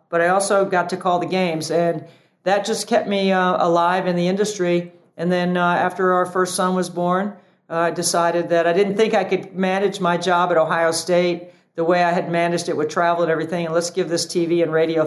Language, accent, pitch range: English, American, 165-185 Hz